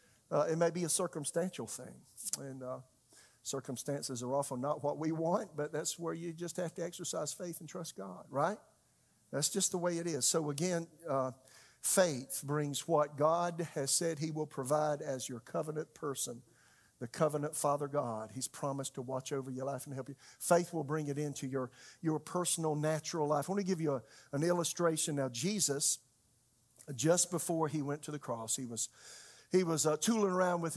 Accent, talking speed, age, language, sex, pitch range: American, 195 wpm, 50-69, English, male, 140-175 Hz